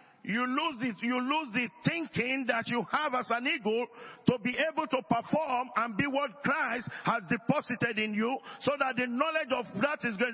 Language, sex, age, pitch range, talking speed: English, male, 50-69, 235-290 Hz, 195 wpm